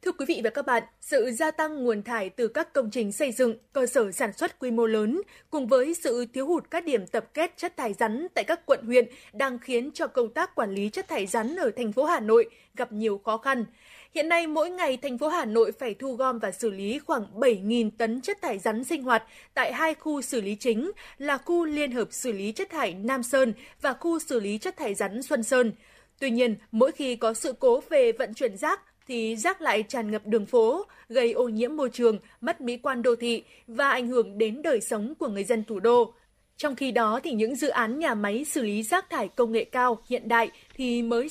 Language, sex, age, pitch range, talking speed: Vietnamese, female, 20-39, 230-310 Hz, 240 wpm